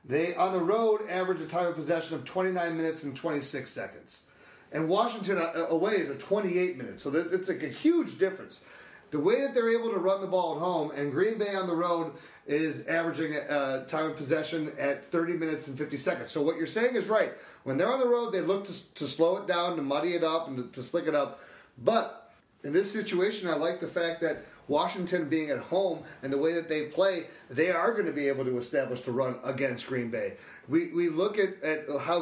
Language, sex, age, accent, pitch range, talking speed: English, male, 40-59, American, 145-190 Hz, 225 wpm